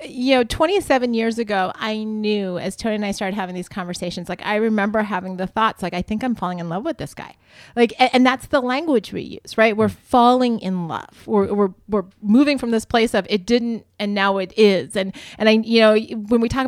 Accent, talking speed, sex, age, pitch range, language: American, 240 wpm, female, 30-49, 185-240 Hz, English